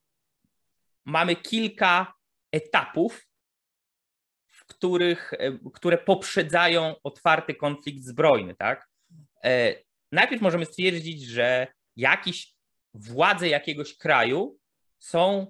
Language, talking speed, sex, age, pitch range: Polish, 75 wpm, male, 30-49, 135-170 Hz